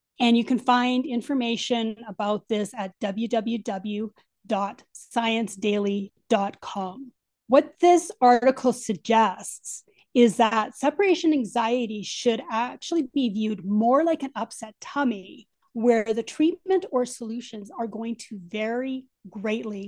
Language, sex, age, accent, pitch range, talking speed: English, female, 30-49, American, 215-260 Hz, 110 wpm